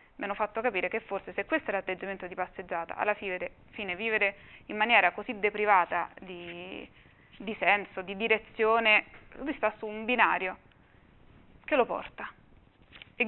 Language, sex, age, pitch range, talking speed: Italian, female, 20-39, 185-235 Hz, 150 wpm